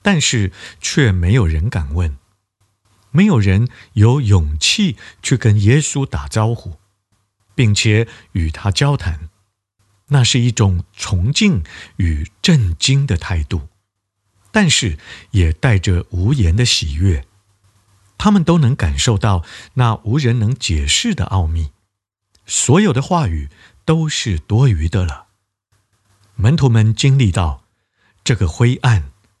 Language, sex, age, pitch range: Chinese, male, 50-69, 95-125 Hz